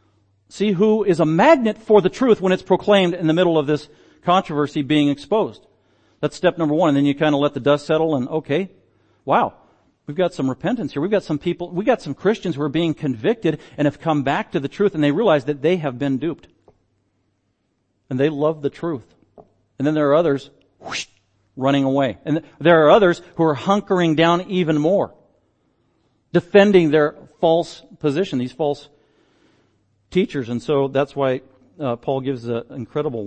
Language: English